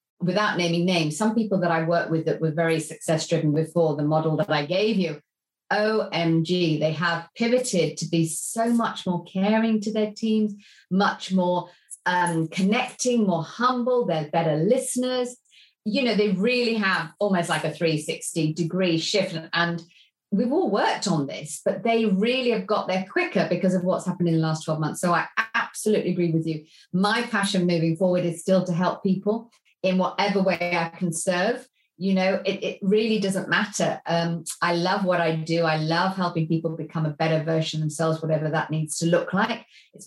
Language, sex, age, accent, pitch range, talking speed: English, female, 30-49, British, 165-200 Hz, 185 wpm